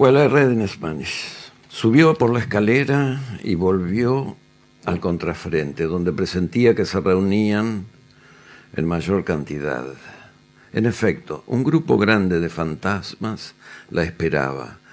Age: 60-79